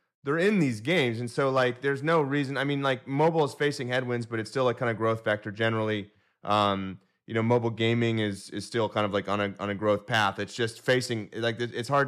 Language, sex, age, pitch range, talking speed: English, male, 30-49, 105-125 Hz, 245 wpm